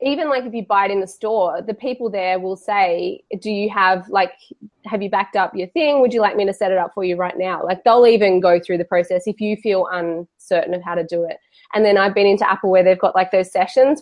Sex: female